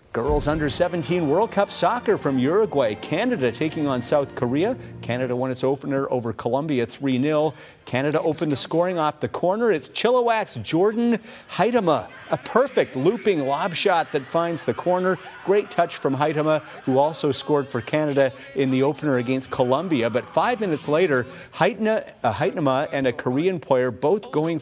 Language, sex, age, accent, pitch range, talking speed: English, male, 50-69, American, 125-165 Hz, 165 wpm